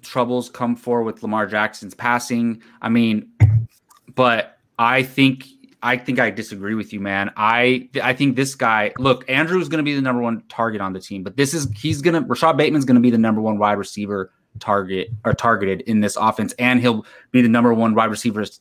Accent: American